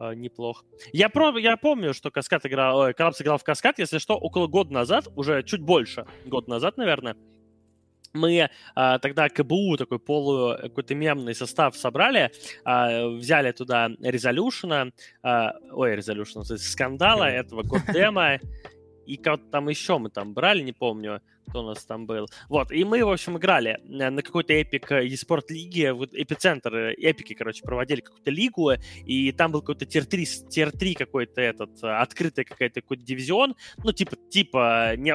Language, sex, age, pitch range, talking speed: Russian, male, 20-39, 120-165 Hz, 150 wpm